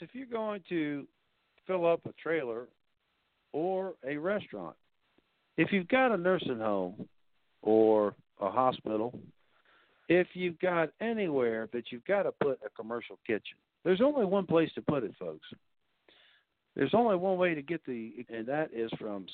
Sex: male